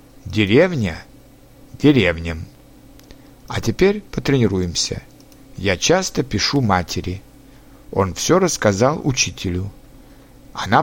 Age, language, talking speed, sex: 60-79, Russian, 80 wpm, male